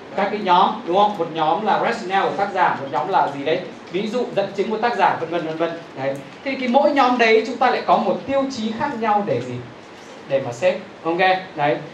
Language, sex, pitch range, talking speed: Vietnamese, male, 175-235 Hz, 245 wpm